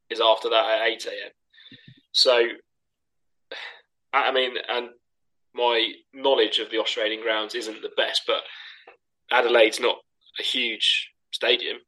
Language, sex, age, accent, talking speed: English, male, 20-39, British, 120 wpm